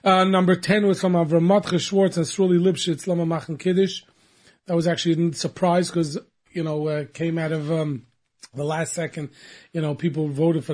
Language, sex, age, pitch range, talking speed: English, male, 30-49, 155-185 Hz, 195 wpm